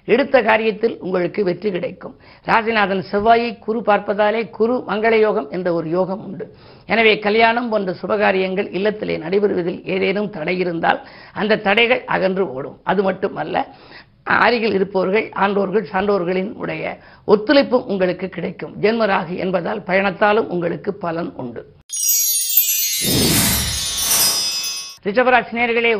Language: Tamil